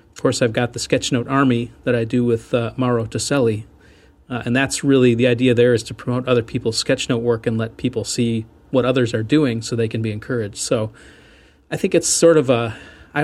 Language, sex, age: English, male, 40-59